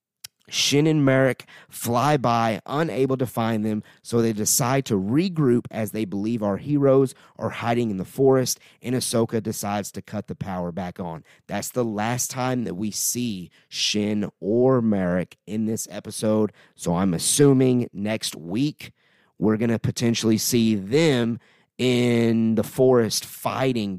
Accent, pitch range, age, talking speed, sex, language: American, 95-120 Hz, 30-49, 155 wpm, male, English